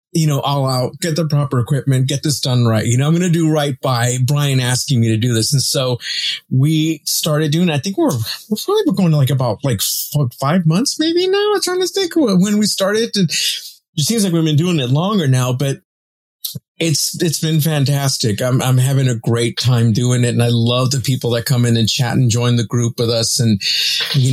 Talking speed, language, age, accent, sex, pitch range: 230 wpm, English, 30-49, American, male, 120-150 Hz